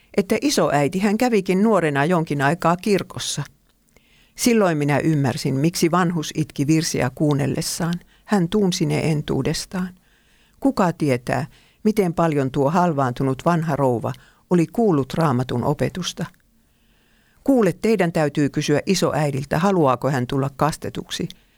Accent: native